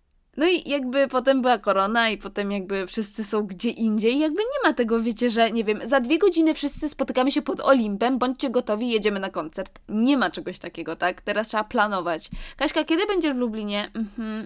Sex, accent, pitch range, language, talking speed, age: female, native, 200-280 Hz, Polish, 200 wpm, 20-39